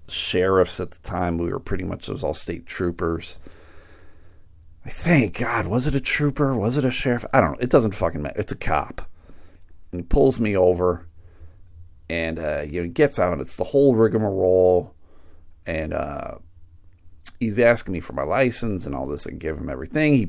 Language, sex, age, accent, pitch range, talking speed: English, male, 40-59, American, 85-105 Hz, 200 wpm